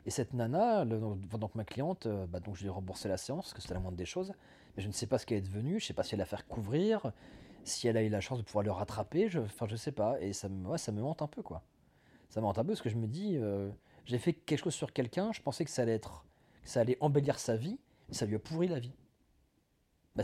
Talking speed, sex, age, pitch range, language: 295 wpm, male, 30-49, 105-145 Hz, French